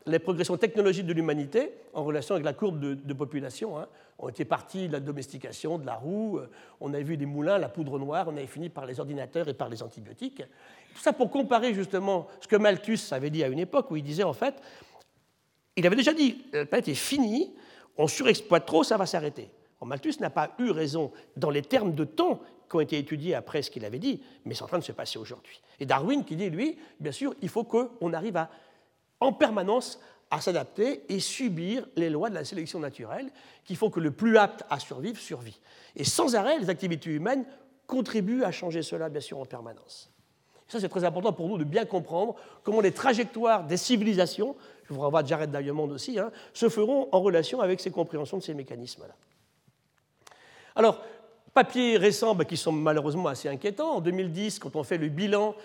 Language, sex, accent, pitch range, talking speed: French, male, French, 155-225 Hz, 210 wpm